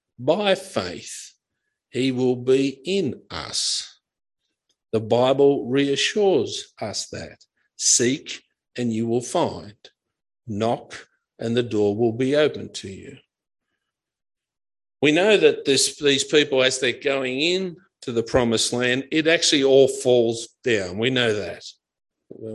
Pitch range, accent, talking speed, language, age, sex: 120-160 Hz, Australian, 130 wpm, English, 50-69, male